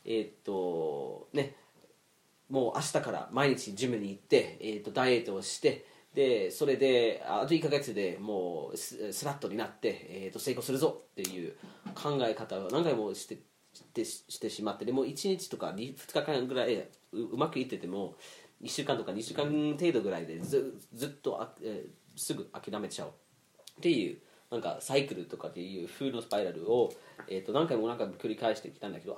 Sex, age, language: male, 30-49, Japanese